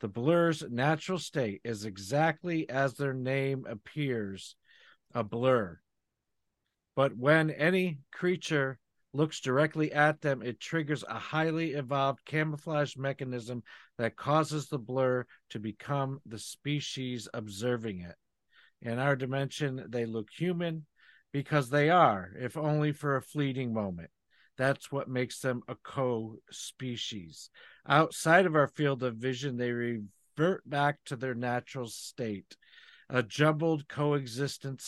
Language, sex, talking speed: English, male, 125 wpm